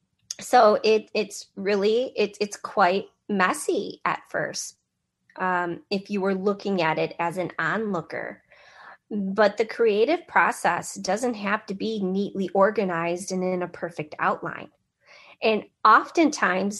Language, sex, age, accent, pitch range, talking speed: English, female, 30-49, American, 190-225 Hz, 130 wpm